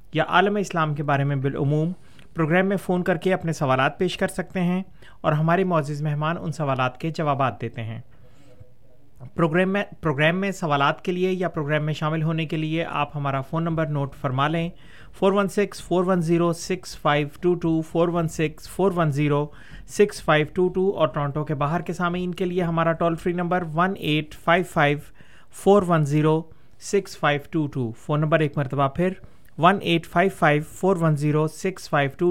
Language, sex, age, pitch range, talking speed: Urdu, male, 30-49, 145-175 Hz, 145 wpm